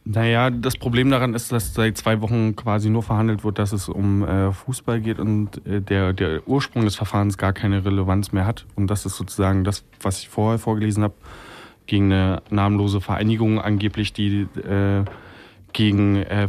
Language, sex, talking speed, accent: German, male, 180 wpm, German